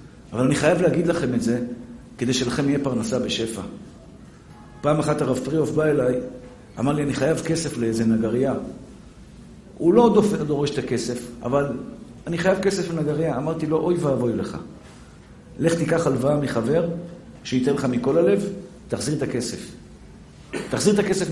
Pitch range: 140-190 Hz